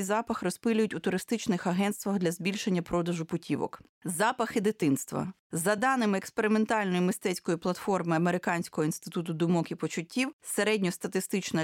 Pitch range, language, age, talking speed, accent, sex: 170-220 Hz, Ukrainian, 30-49, 115 wpm, native, female